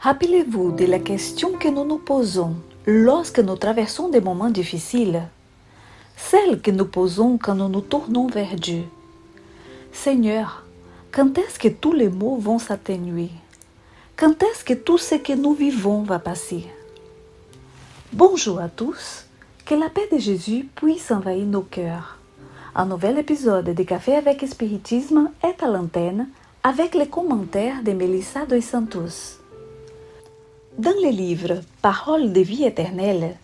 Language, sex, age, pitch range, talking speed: Portuguese, female, 40-59, 185-275 Hz, 140 wpm